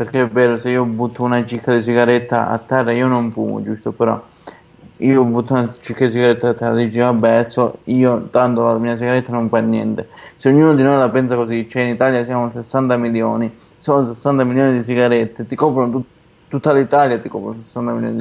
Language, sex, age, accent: Italian, male, 20-39, native